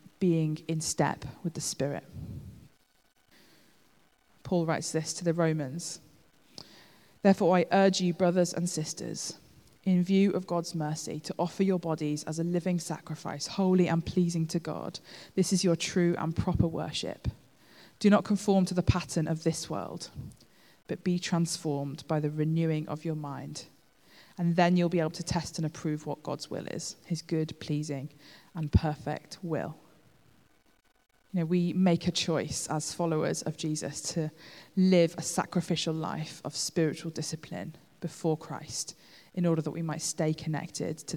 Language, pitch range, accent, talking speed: English, 155-175 Hz, British, 155 wpm